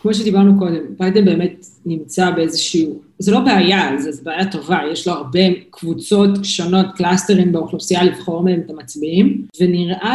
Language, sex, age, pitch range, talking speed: Hebrew, female, 20-39, 170-195 Hz, 150 wpm